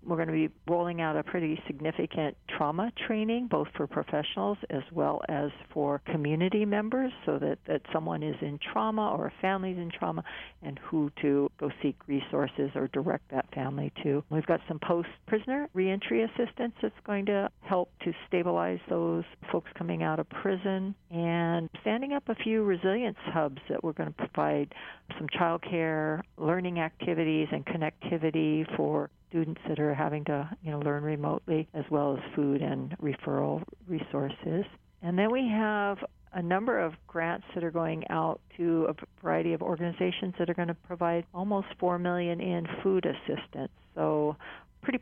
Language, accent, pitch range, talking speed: English, American, 155-195 Hz, 170 wpm